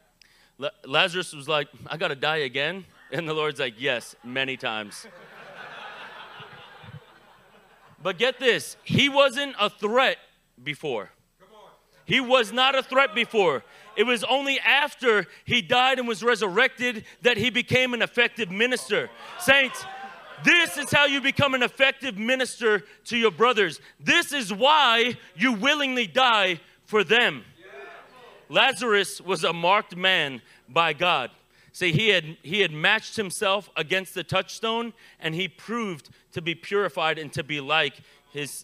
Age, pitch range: 30-49, 170-240 Hz